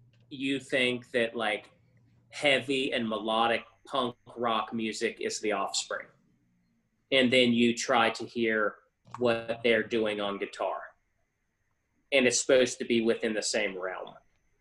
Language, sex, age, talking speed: English, male, 30-49, 135 wpm